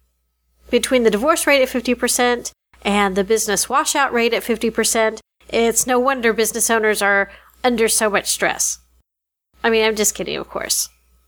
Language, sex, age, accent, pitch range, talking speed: English, female, 40-59, American, 190-245 Hz, 160 wpm